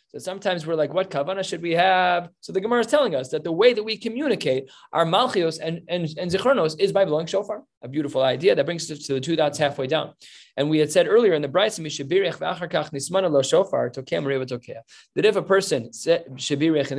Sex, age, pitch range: male, 20-39, 140-190 Hz